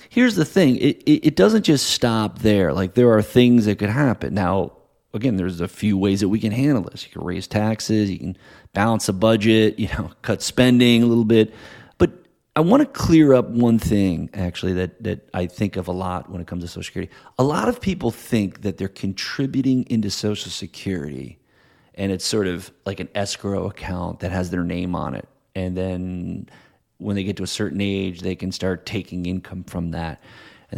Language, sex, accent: English, male, American